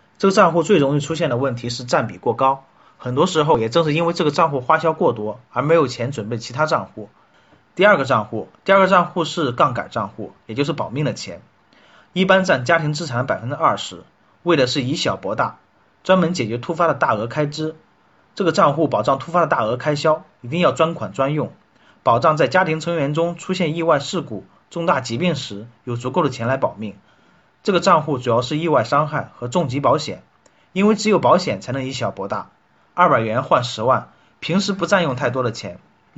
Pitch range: 125-170 Hz